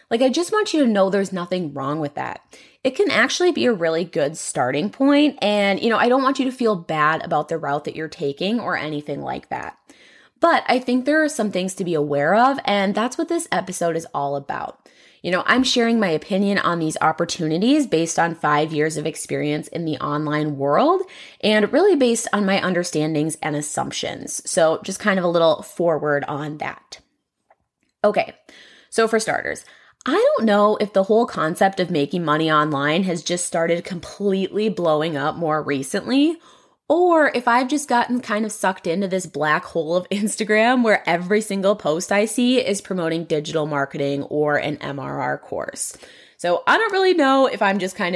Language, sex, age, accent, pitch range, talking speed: English, female, 20-39, American, 160-235 Hz, 195 wpm